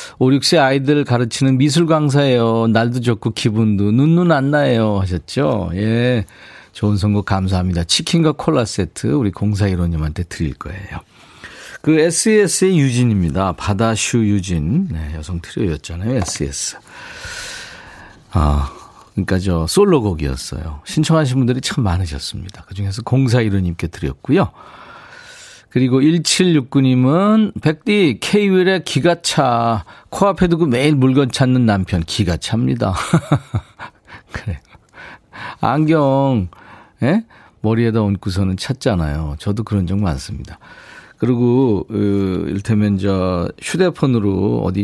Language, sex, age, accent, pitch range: Korean, male, 40-59, native, 95-150 Hz